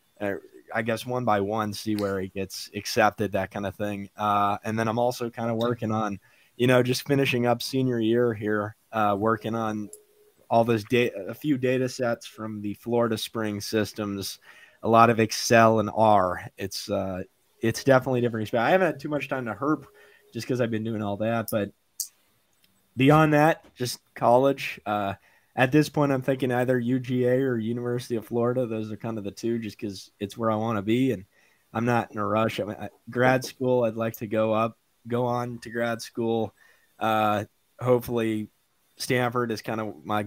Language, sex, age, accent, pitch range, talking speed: English, male, 20-39, American, 105-120 Hz, 195 wpm